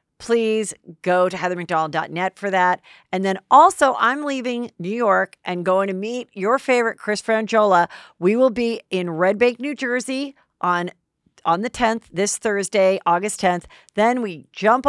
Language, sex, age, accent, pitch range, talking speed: English, female, 50-69, American, 180-235 Hz, 160 wpm